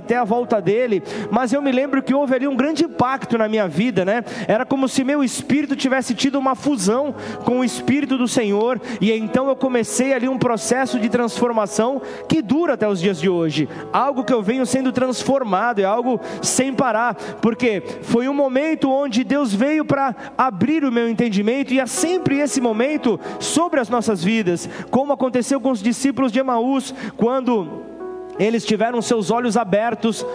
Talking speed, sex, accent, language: 180 wpm, male, Brazilian, Portuguese